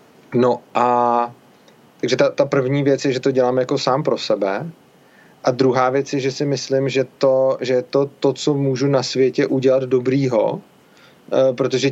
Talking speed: 175 wpm